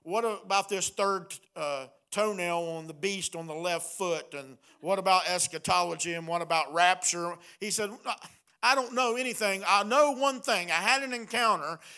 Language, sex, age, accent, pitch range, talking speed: English, male, 50-69, American, 160-225 Hz, 175 wpm